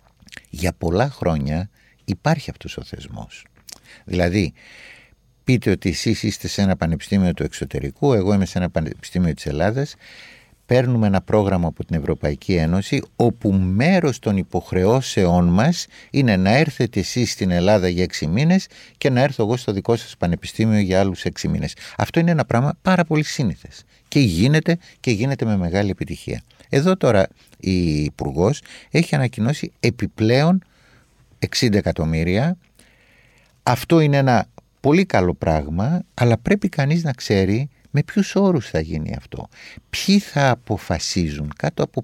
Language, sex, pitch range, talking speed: Greek, male, 90-140 Hz, 145 wpm